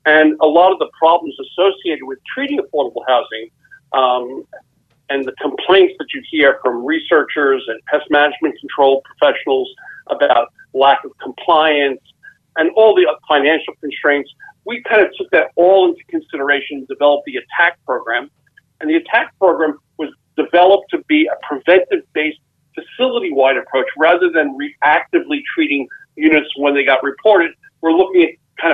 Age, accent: 50-69, American